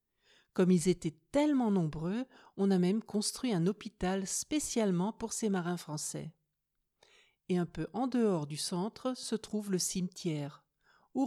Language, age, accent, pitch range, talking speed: French, 50-69, French, 170-220 Hz, 150 wpm